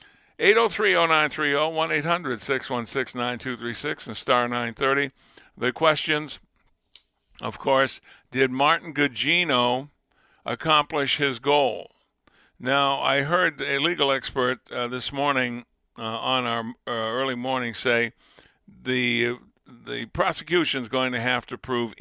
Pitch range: 125-155 Hz